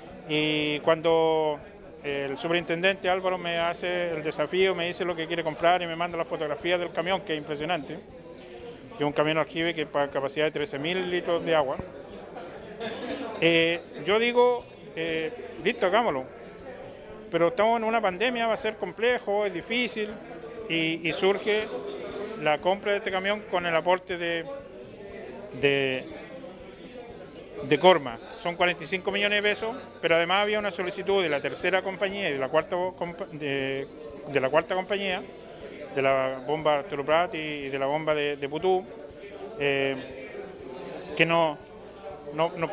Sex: male